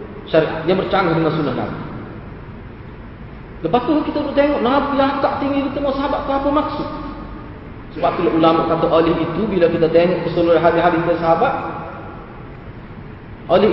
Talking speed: 140 wpm